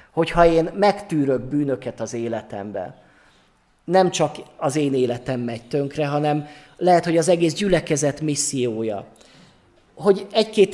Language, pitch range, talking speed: Hungarian, 140-190 Hz, 125 wpm